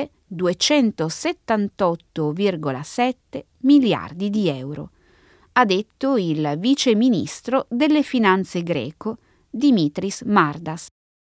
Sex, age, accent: female, 20-39, native